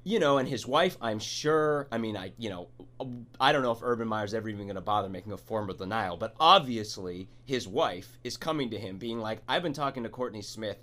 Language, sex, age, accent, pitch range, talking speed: English, male, 30-49, American, 110-140 Hz, 245 wpm